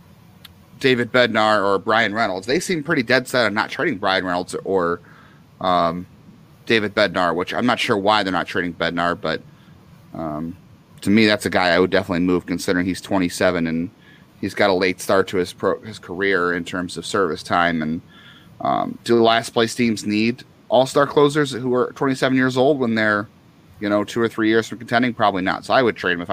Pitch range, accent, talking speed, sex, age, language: 95-120 Hz, American, 205 wpm, male, 30-49, English